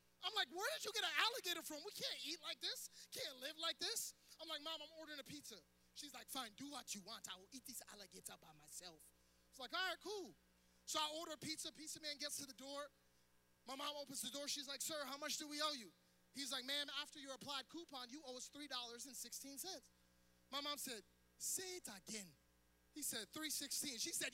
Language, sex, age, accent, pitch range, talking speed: English, male, 20-39, American, 205-330 Hz, 225 wpm